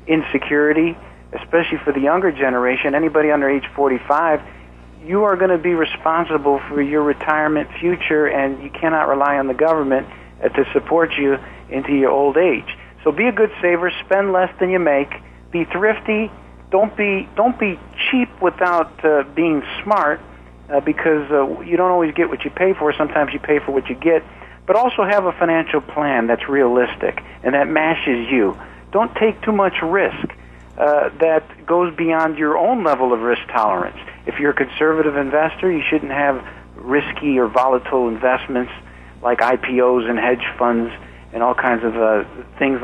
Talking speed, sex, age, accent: 170 wpm, male, 50-69, American